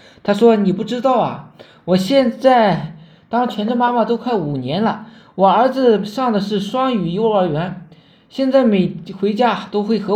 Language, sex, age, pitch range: Chinese, male, 20-39, 190-245 Hz